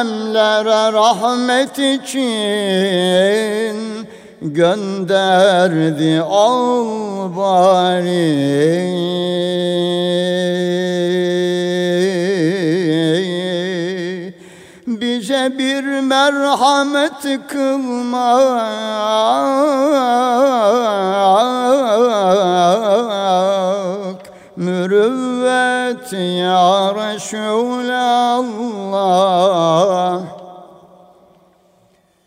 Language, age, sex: Turkish, 50-69, male